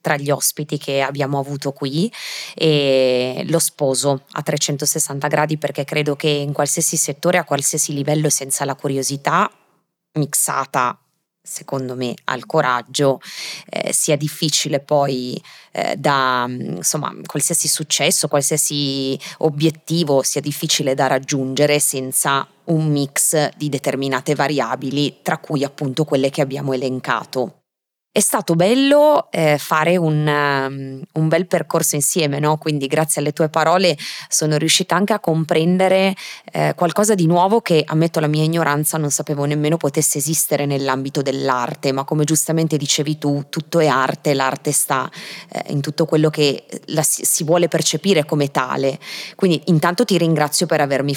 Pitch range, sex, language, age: 140-165 Hz, female, Italian, 20-39